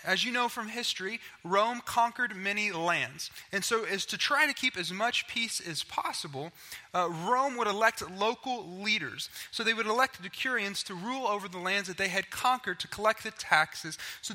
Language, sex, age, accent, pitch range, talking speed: English, male, 20-39, American, 185-235 Hz, 195 wpm